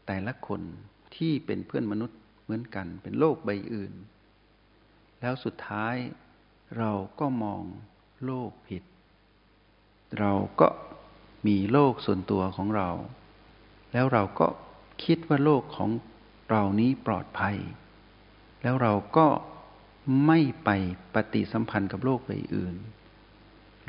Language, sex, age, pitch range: Thai, male, 60-79, 105-125 Hz